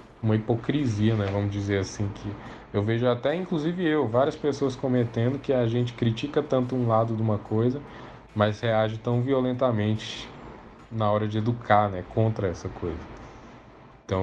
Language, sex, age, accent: Portuguese, male, 10-29, Brazilian